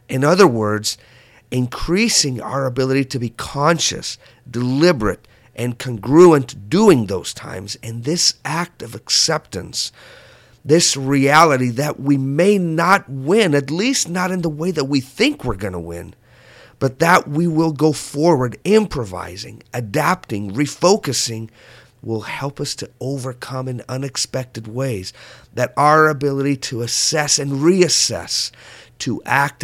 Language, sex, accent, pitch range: English, male, American, 125-165 Hz